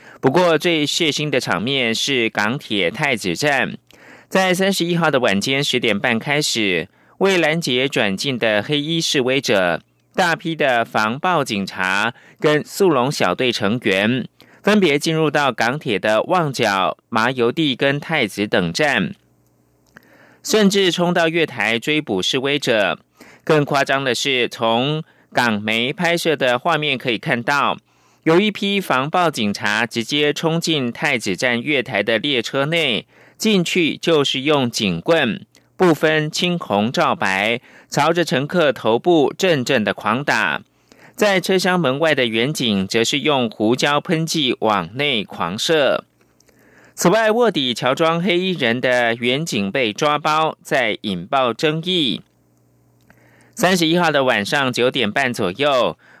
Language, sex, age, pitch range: German, male, 30-49, 115-165 Hz